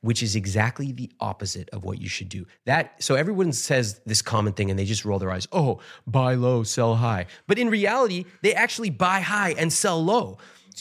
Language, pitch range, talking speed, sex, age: English, 105-150 Hz, 215 wpm, male, 30-49